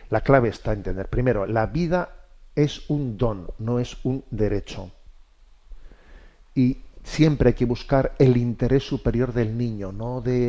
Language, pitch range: Spanish, 110-135 Hz